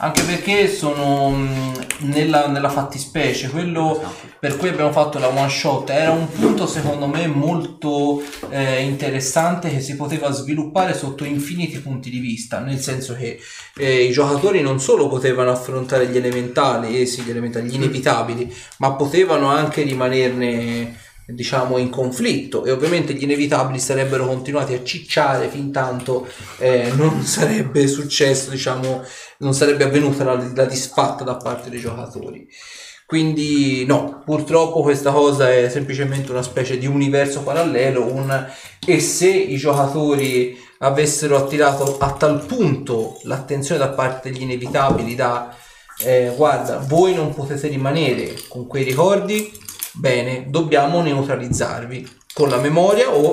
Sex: male